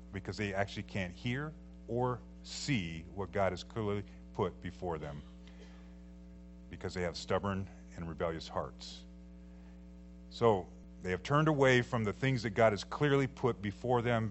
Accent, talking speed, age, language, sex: American, 150 wpm, 50-69, English, male